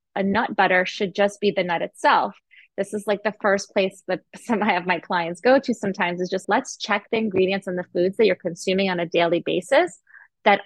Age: 30-49